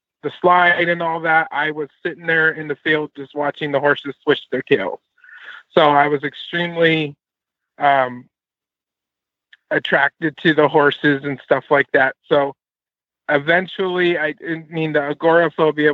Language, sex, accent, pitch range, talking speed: English, male, American, 140-155 Hz, 145 wpm